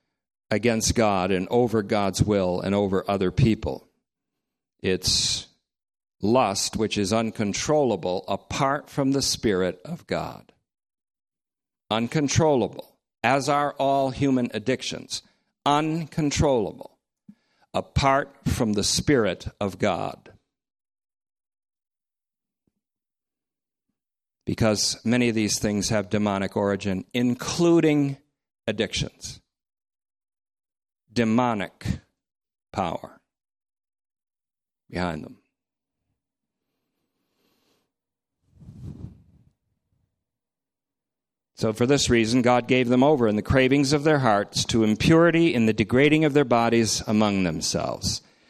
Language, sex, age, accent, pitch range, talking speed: English, male, 50-69, American, 105-140 Hz, 90 wpm